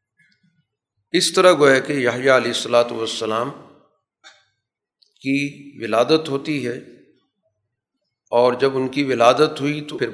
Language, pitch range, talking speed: Urdu, 120-145 Hz, 110 wpm